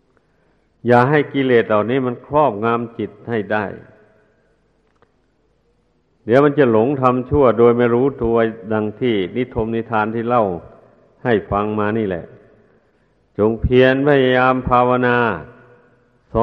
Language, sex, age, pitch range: Thai, male, 60-79, 115-130 Hz